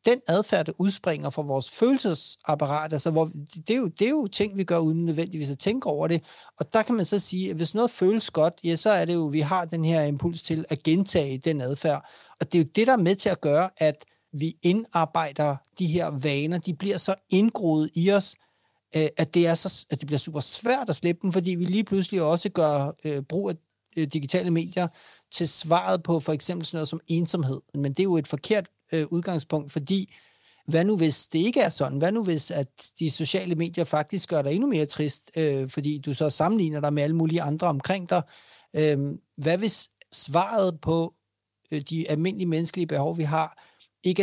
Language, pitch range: Danish, 150-185 Hz